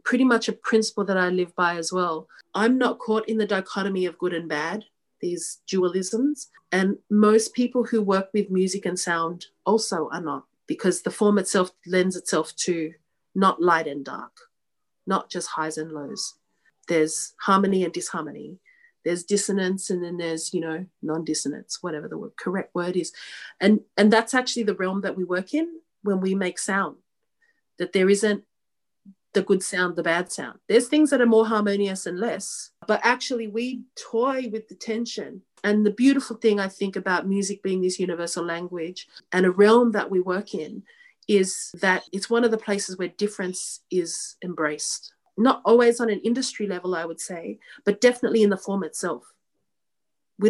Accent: Australian